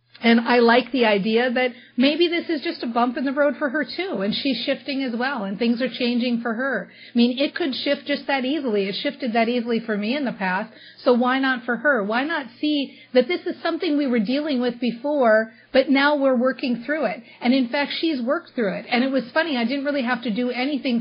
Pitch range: 225-280 Hz